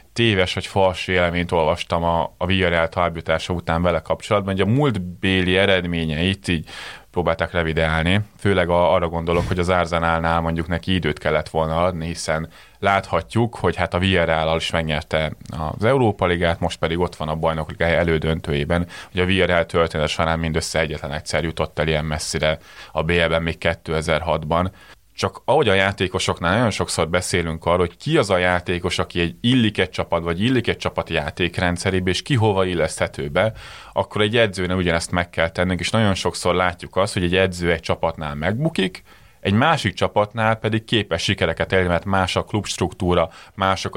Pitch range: 85-95 Hz